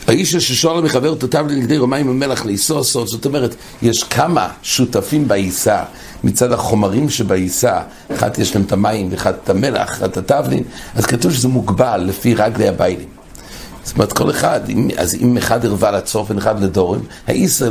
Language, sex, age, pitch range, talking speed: English, male, 60-79, 110-150 Hz, 170 wpm